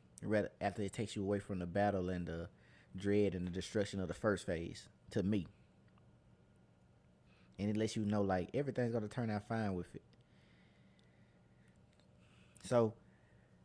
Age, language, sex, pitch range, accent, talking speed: 20-39, English, male, 90-110 Hz, American, 150 wpm